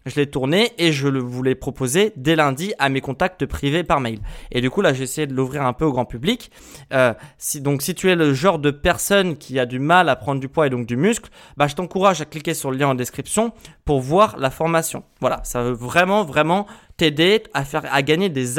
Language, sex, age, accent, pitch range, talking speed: French, male, 20-39, French, 130-170 Hz, 245 wpm